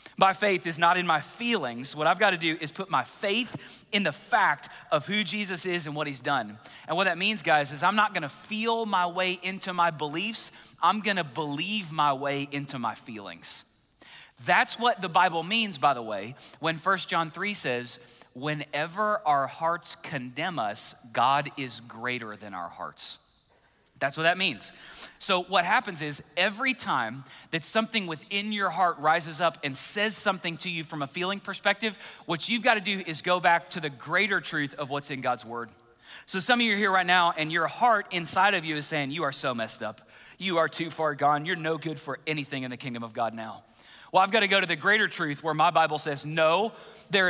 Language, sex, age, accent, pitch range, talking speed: English, male, 30-49, American, 140-190 Hz, 215 wpm